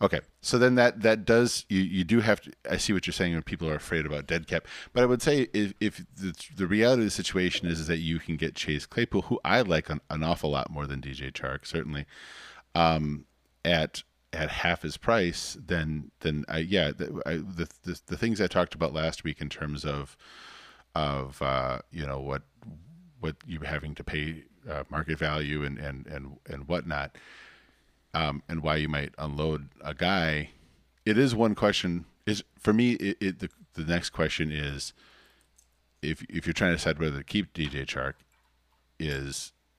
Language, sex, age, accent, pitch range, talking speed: English, male, 40-59, American, 75-95 Hz, 195 wpm